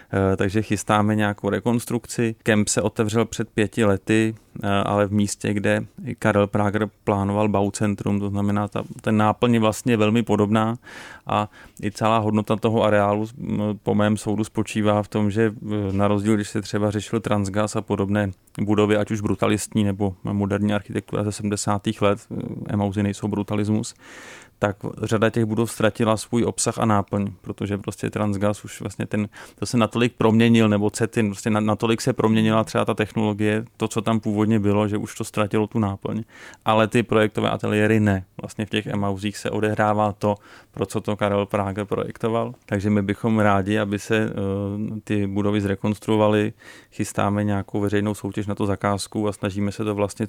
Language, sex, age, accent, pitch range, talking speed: Czech, male, 30-49, native, 100-110 Hz, 165 wpm